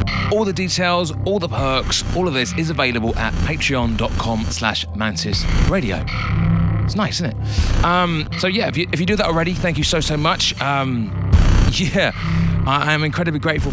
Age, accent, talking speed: 30-49, British, 170 wpm